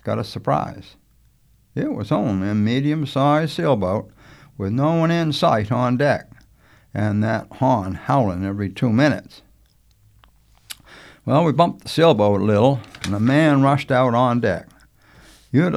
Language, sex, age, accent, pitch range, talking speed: English, male, 60-79, American, 110-145 Hz, 145 wpm